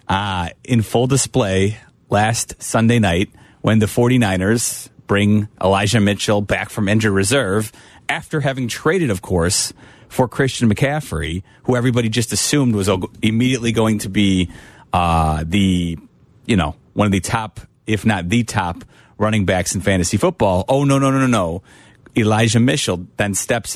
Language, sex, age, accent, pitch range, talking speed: English, male, 30-49, American, 95-120 Hz, 155 wpm